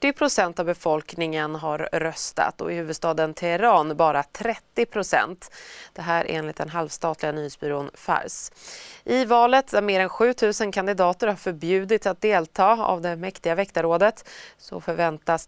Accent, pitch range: native, 160-205 Hz